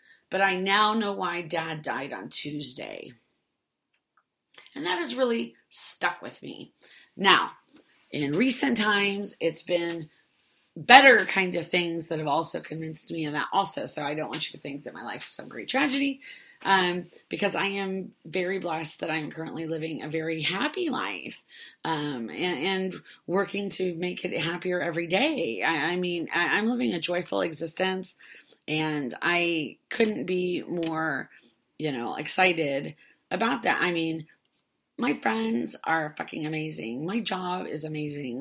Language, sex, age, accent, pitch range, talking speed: English, female, 30-49, American, 155-195 Hz, 160 wpm